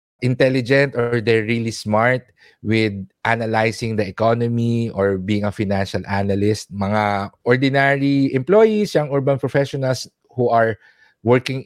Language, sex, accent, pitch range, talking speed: English, male, Filipino, 110-140 Hz, 120 wpm